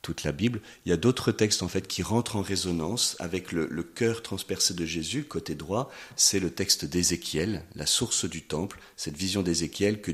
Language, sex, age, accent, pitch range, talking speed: French, male, 40-59, French, 80-100 Hz, 205 wpm